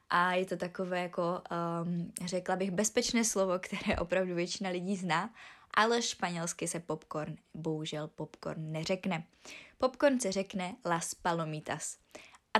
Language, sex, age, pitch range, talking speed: Czech, female, 20-39, 175-225 Hz, 135 wpm